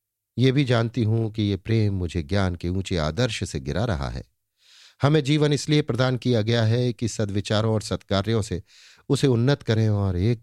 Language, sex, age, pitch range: Hindi, male, 50-69, 100-125 Hz